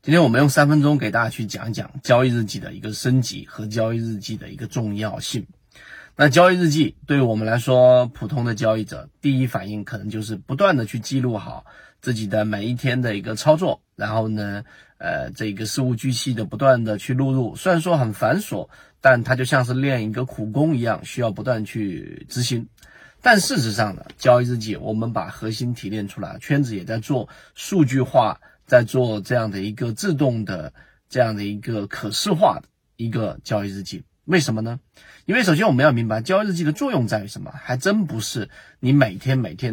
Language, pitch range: Chinese, 110-140 Hz